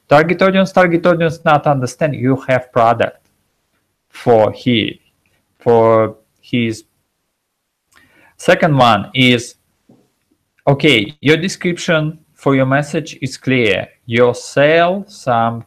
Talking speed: 105 wpm